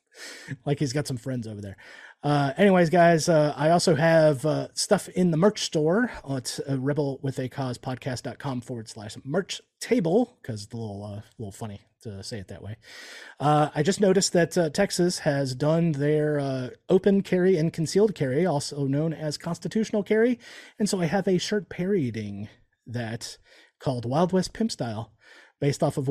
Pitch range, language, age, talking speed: 135-180 Hz, English, 30-49, 185 wpm